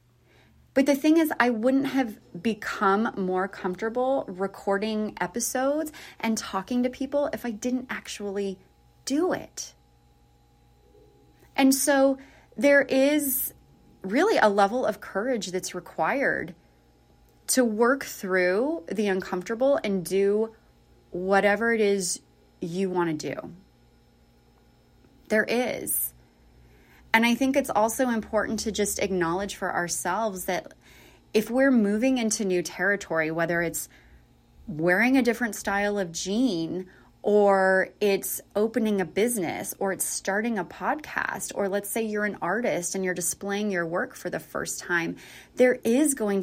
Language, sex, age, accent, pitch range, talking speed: English, female, 30-49, American, 175-235 Hz, 135 wpm